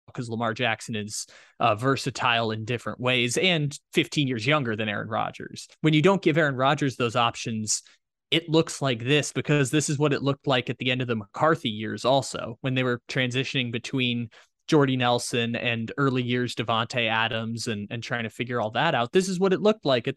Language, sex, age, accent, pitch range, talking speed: English, male, 20-39, American, 120-145 Hz, 210 wpm